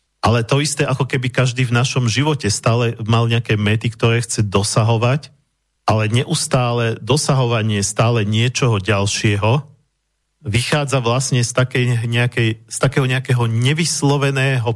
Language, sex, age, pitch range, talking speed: Slovak, male, 40-59, 105-130 Hz, 120 wpm